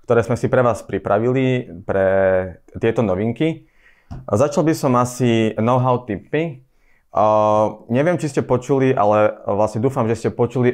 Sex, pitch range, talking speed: male, 105-125 Hz, 145 wpm